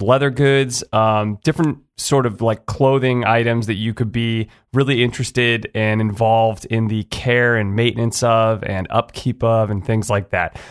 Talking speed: 175 wpm